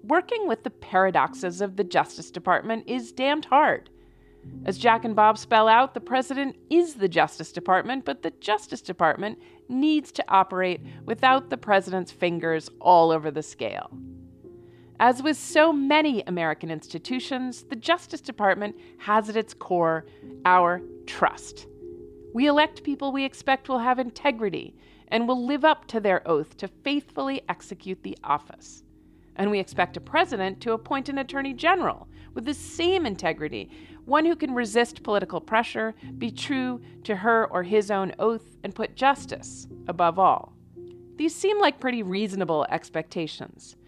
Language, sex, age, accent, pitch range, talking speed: English, female, 40-59, American, 180-270 Hz, 155 wpm